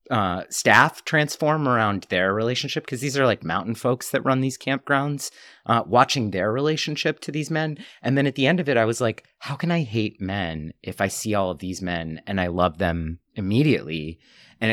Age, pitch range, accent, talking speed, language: 30-49, 90-120 Hz, American, 210 wpm, English